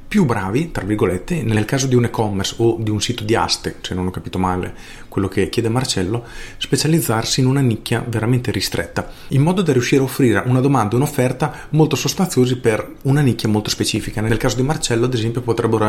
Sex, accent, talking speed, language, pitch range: male, native, 200 wpm, Italian, 105-130 Hz